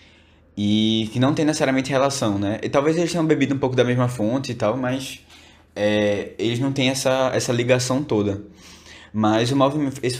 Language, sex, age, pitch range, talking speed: Portuguese, male, 20-39, 105-135 Hz, 180 wpm